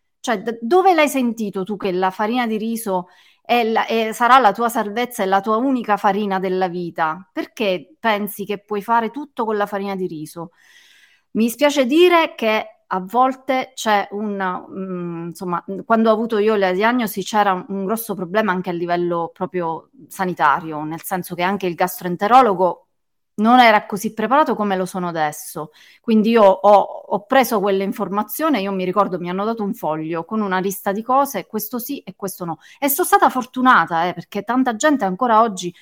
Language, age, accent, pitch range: Italian, 30-49, native, 185-230 Hz